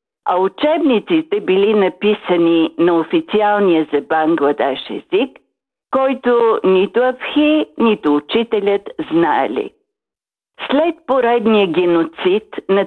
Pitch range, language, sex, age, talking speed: 170-265 Hz, Bulgarian, female, 50-69, 90 wpm